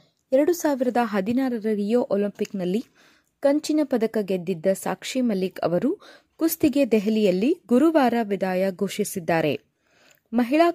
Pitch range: 200-275 Hz